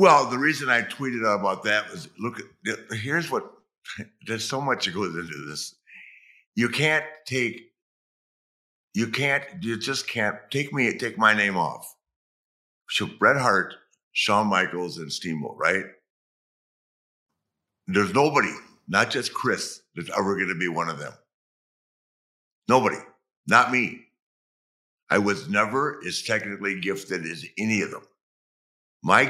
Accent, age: American, 60-79